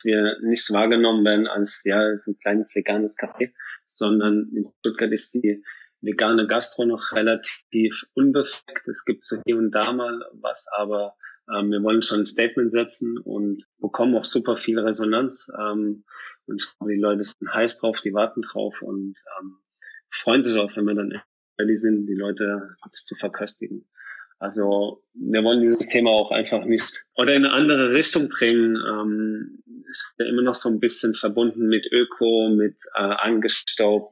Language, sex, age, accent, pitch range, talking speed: German, male, 20-39, German, 105-115 Hz, 170 wpm